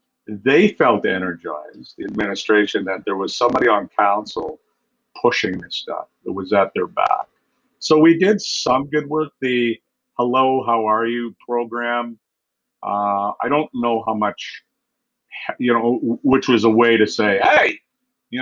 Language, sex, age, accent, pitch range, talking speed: English, male, 50-69, American, 105-130 Hz, 155 wpm